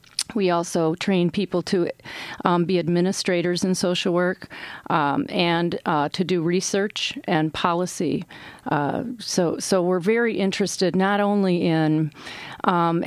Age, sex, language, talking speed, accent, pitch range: 40-59, female, English, 135 wpm, American, 160-200 Hz